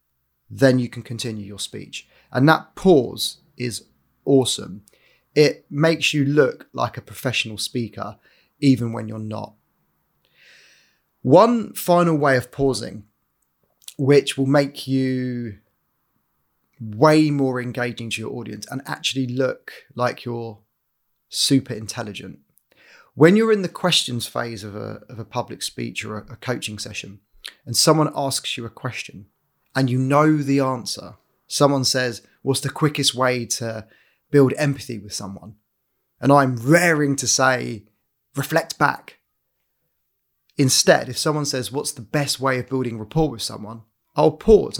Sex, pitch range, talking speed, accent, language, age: male, 110-145 Hz, 140 wpm, British, English, 30-49